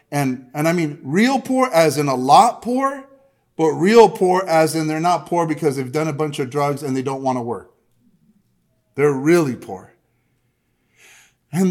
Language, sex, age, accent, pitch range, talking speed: English, male, 40-59, American, 130-205 Hz, 185 wpm